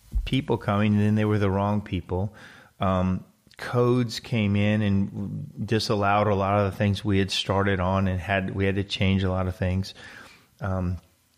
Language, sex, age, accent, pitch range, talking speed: English, male, 30-49, American, 95-110 Hz, 185 wpm